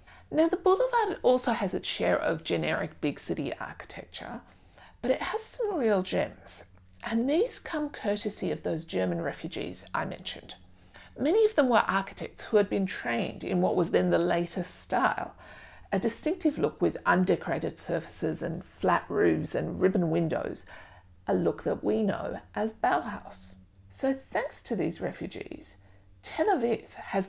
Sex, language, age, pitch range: female, English, 50-69, 165-255 Hz